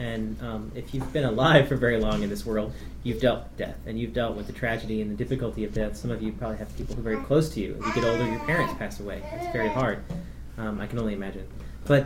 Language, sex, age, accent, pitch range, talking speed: English, male, 30-49, American, 120-155 Hz, 280 wpm